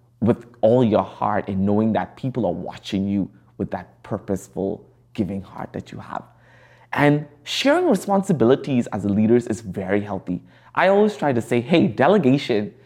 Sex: male